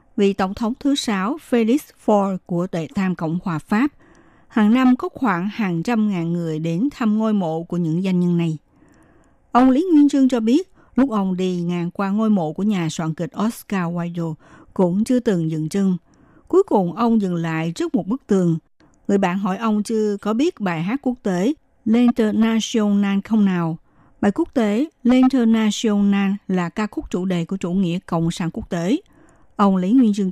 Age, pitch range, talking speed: 60-79, 175-240 Hz, 190 wpm